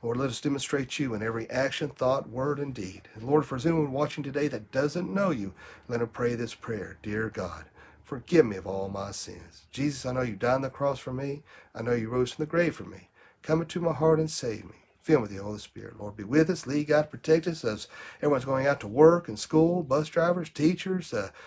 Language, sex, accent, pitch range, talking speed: English, male, American, 110-150 Hz, 245 wpm